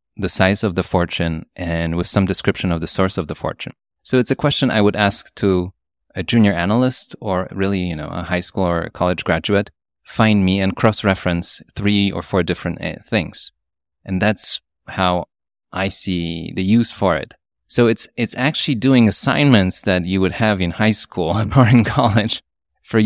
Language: English